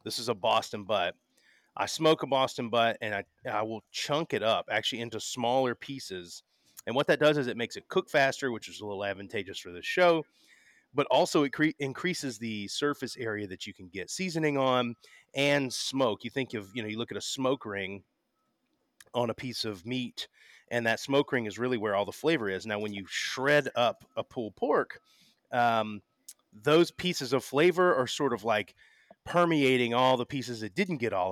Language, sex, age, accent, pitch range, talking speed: English, male, 30-49, American, 105-140 Hz, 205 wpm